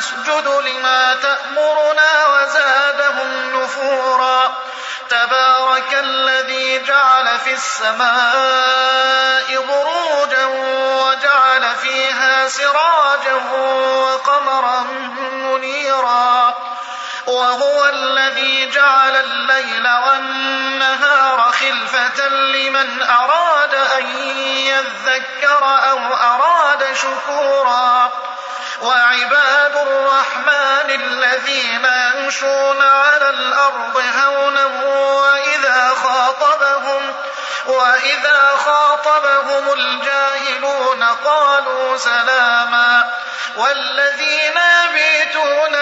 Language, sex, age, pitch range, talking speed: Arabic, male, 30-49, 255-285 Hz, 60 wpm